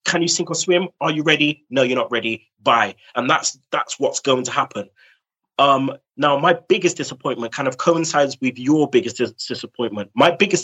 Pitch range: 130-180 Hz